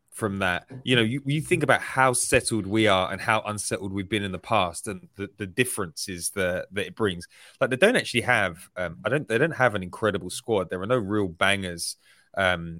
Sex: male